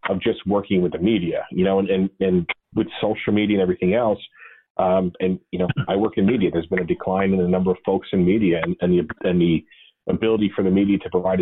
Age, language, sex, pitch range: 40-59, English, male, 90-105 Hz